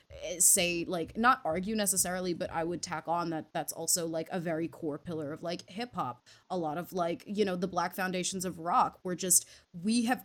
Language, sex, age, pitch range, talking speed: English, female, 20-39, 175-205 Hz, 215 wpm